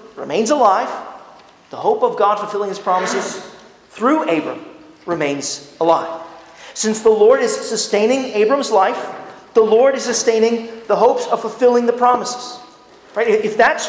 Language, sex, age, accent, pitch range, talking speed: English, male, 40-59, American, 200-280 Hz, 140 wpm